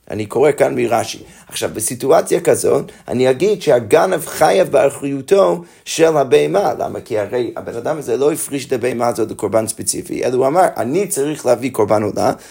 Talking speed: 170 wpm